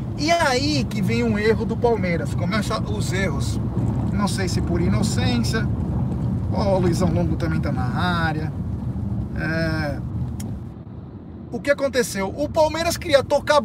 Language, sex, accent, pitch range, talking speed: Portuguese, male, Brazilian, 155-245 Hz, 145 wpm